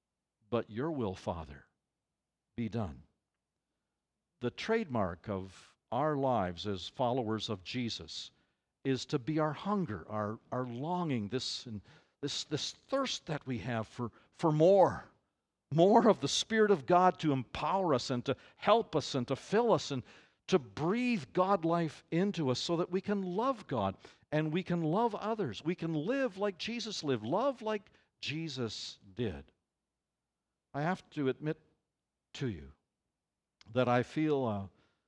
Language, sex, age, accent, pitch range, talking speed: English, male, 60-79, American, 110-170 Hz, 150 wpm